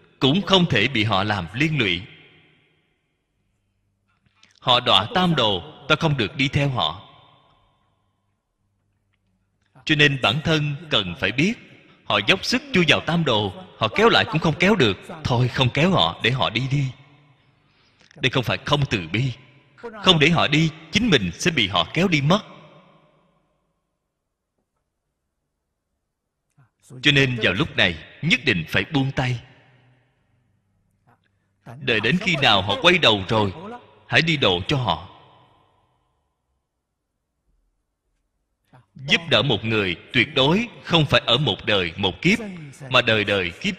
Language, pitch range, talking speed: Vietnamese, 100-155 Hz, 145 wpm